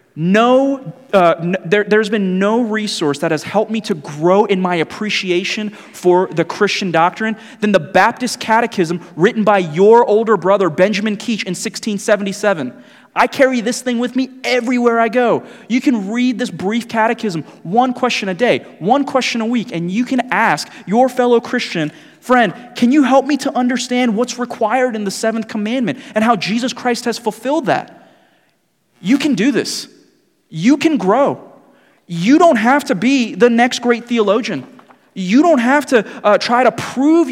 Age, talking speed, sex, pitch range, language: 30-49, 170 wpm, male, 195-250 Hz, English